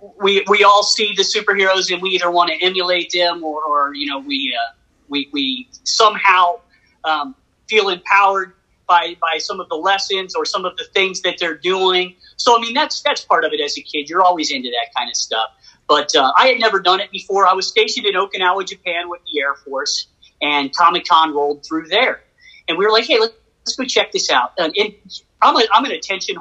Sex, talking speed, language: male, 220 wpm, English